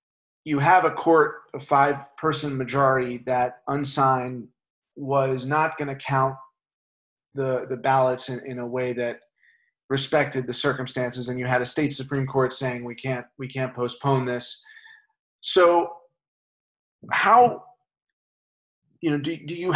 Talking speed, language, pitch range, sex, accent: 140 wpm, English, 125-155 Hz, male, American